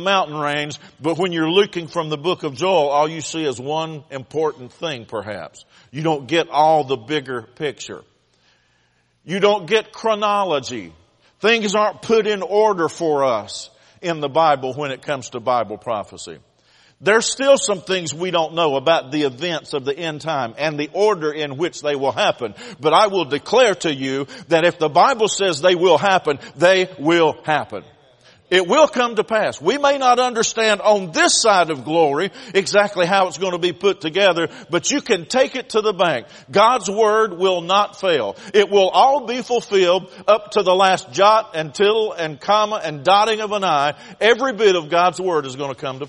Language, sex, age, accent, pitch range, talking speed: English, male, 50-69, American, 150-210 Hz, 195 wpm